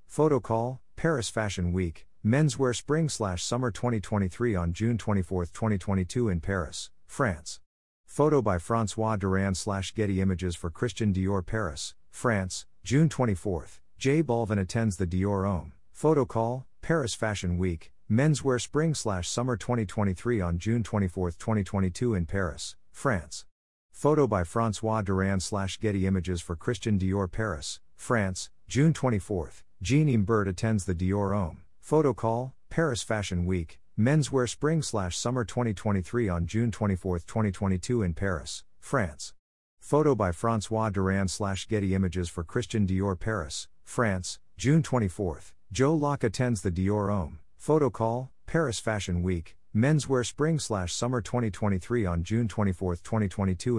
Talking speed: 125 wpm